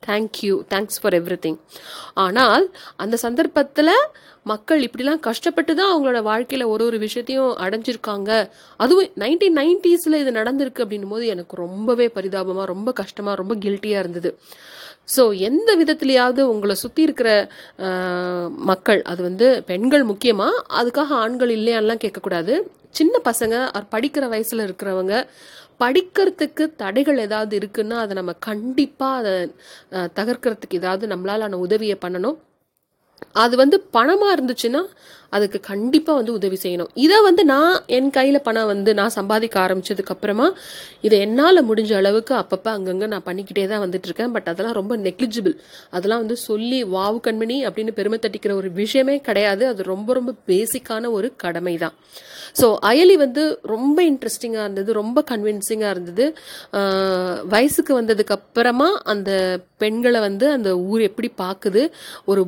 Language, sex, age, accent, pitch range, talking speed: Tamil, female, 30-49, native, 200-260 Hz, 135 wpm